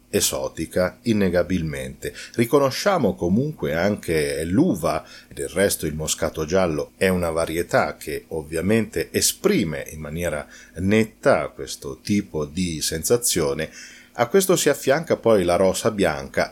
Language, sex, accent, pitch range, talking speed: Italian, male, native, 85-115 Hz, 115 wpm